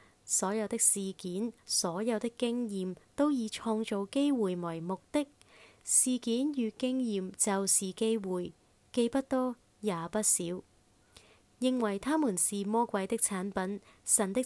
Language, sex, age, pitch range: Chinese, female, 20-39, 185-230 Hz